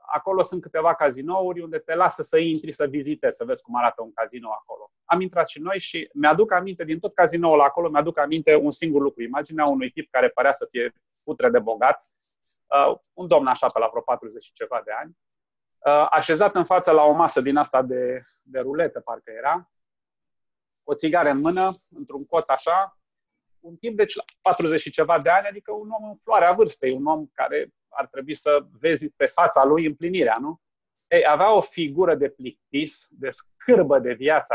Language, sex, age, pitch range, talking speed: Romanian, male, 30-49, 150-210 Hz, 195 wpm